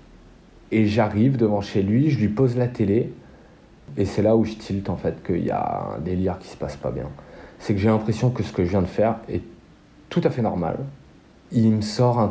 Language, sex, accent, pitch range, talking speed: French, male, French, 100-115 Hz, 235 wpm